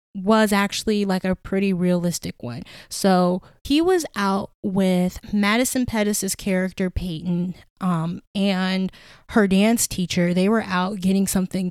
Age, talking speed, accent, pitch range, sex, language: 10-29, 135 wpm, American, 180-215 Hz, female, English